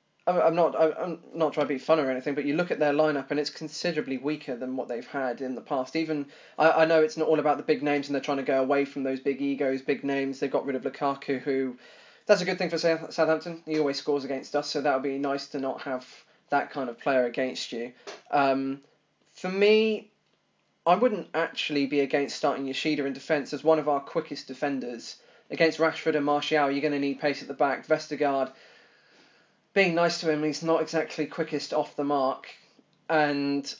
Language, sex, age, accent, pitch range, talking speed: English, male, 20-39, British, 140-155 Hz, 220 wpm